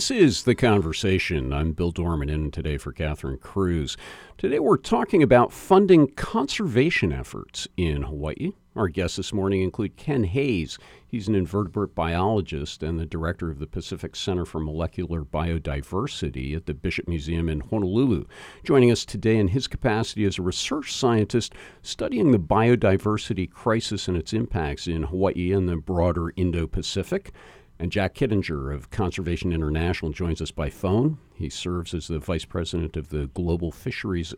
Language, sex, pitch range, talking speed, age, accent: English, male, 80-110 Hz, 160 wpm, 50-69, American